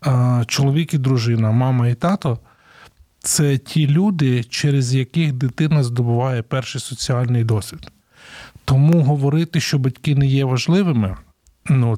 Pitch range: 120-145 Hz